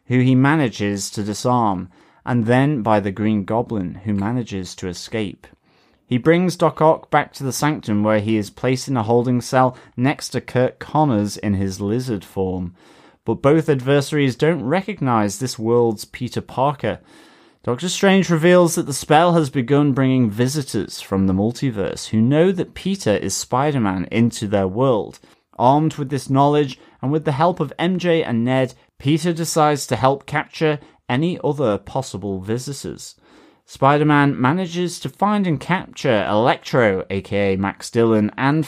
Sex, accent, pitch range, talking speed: male, British, 110-150 Hz, 160 wpm